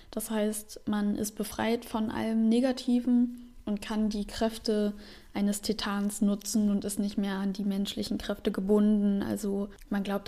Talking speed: 160 wpm